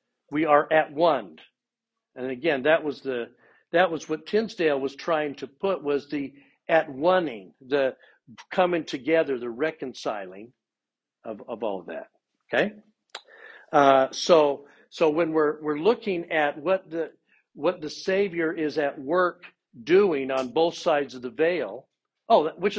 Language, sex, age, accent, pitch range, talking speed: English, male, 60-79, American, 135-170 Hz, 150 wpm